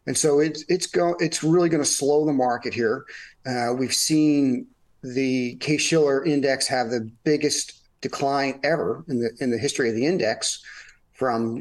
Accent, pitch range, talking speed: American, 125-155 Hz, 170 wpm